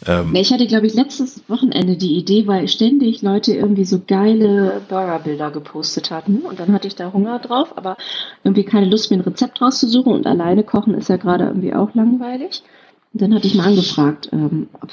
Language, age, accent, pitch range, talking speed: German, 40-59, German, 165-225 Hz, 195 wpm